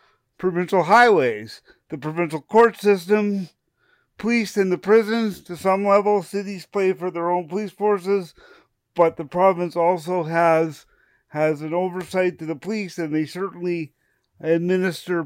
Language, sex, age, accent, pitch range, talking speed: English, male, 50-69, American, 160-195 Hz, 140 wpm